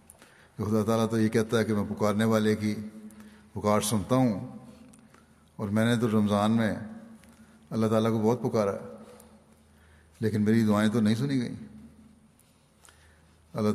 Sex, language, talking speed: male, Urdu, 150 wpm